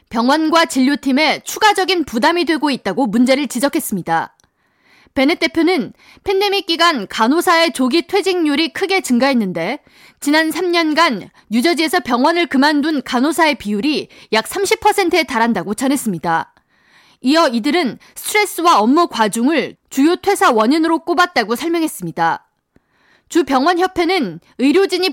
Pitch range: 250-355 Hz